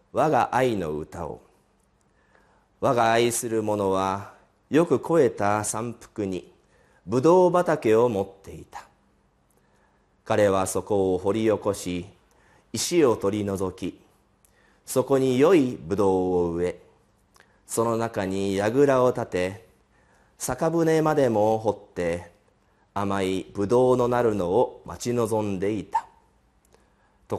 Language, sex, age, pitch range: Japanese, male, 40-59, 95-120 Hz